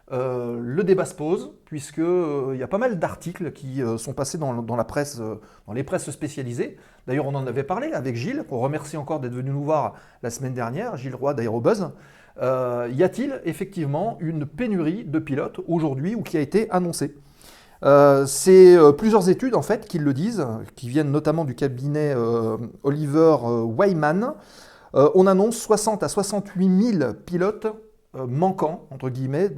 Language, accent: French, French